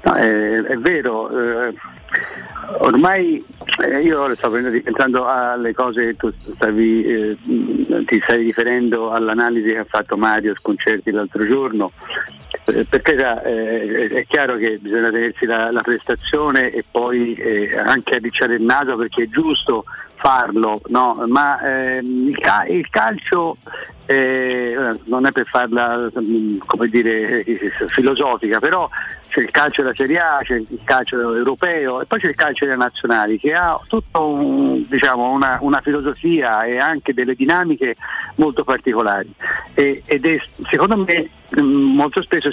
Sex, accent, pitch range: male, native, 115-140 Hz